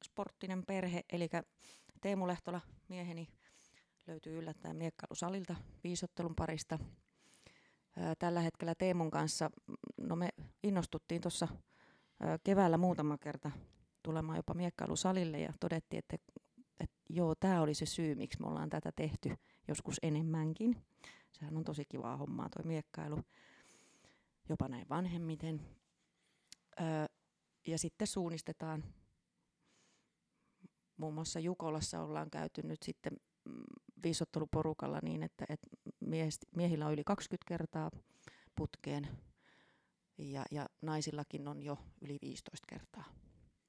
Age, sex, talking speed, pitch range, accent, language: 30-49, female, 110 wpm, 150-175 Hz, native, Finnish